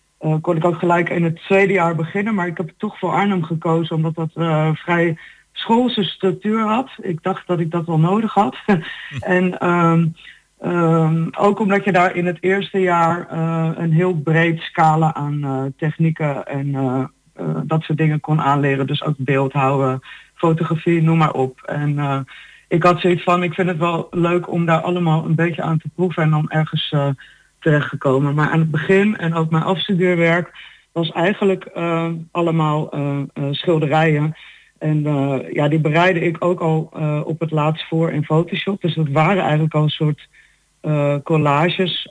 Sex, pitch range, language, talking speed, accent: female, 155-175 Hz, Dutch, 185 wpm, Dutch